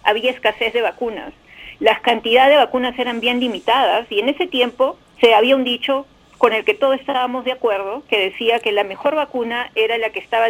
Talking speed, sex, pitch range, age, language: 205 wpm, female, 220-255 Hz, 40-59, English